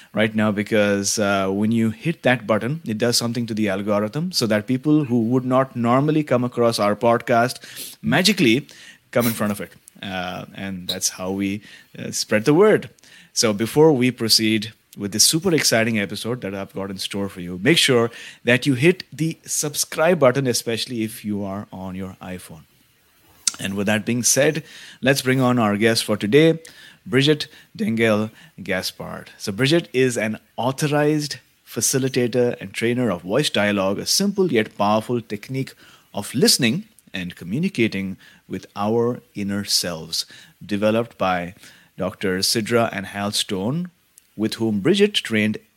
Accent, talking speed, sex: Indian, 160 wpm, male